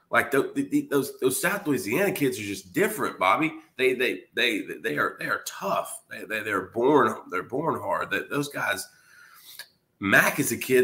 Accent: American